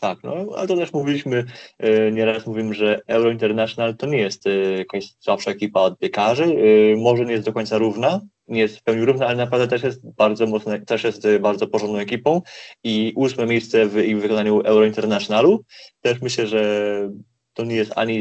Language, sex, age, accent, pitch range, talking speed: Polish, male, 20-39, native, 100-115 Hz, 200 wpm